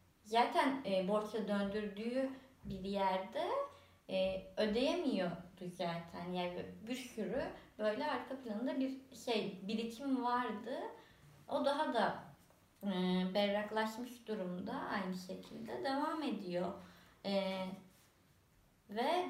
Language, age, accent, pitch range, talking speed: Turkish, 20-39, native, 190-235 Hz, 95 wpm